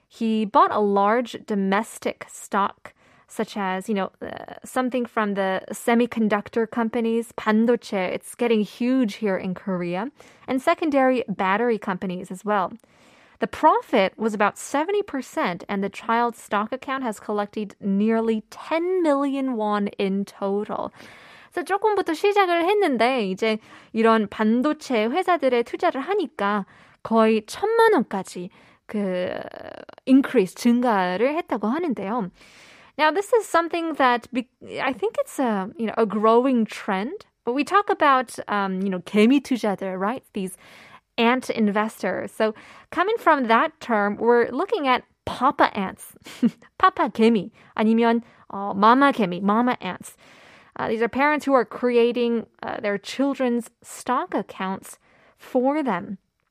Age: 20-39